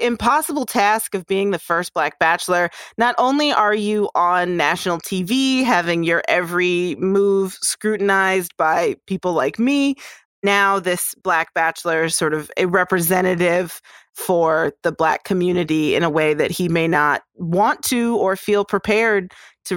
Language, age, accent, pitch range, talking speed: English, 30-49, American, 175-210 Hz, 150 wpm